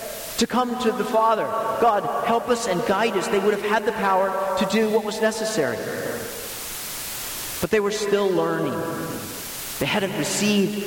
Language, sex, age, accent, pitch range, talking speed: English, male, 50-69, American, 205-260 Hz, 165 wpm